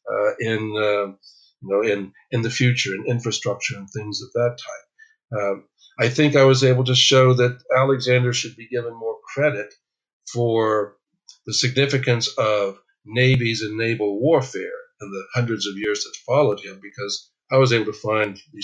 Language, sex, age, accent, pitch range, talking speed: English, male, 50-69, American, 105-135 Hz, 175 wpm